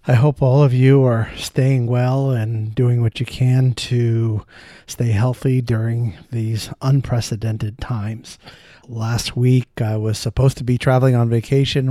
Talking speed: 150 wpm